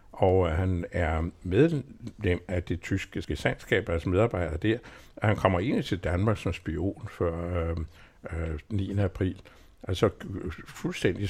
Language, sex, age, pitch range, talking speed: Danish, male, 60-79, 90-110 Hz, 140 wpm